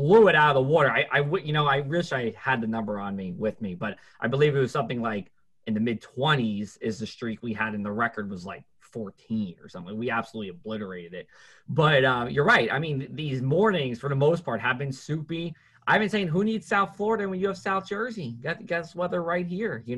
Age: 20-39